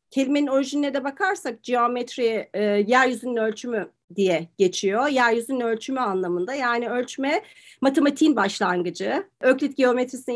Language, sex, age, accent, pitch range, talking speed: Turkish, female, 40-59, native, 215-295 Hz, 105 wpm